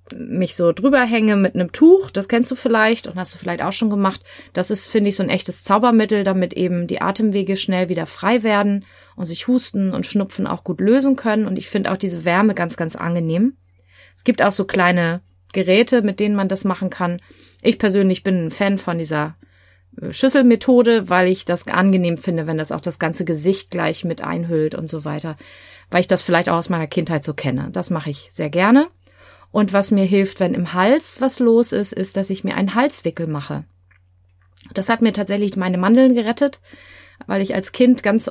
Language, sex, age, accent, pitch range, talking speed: German, female, 30-49, German, 170-210 Hz, 210 wpm